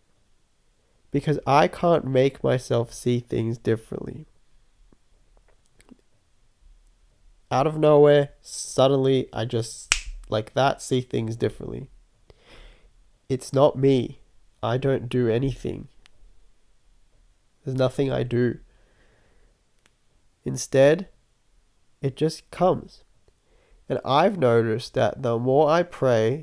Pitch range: 115-135 Hz